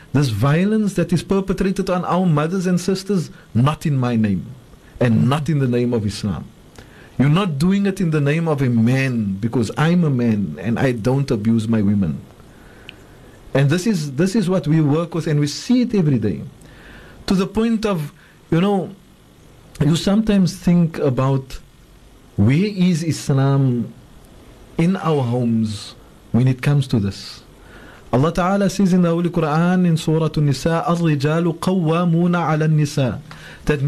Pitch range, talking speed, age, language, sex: 135-190 Hz, 155 wpm, 50-69, English, male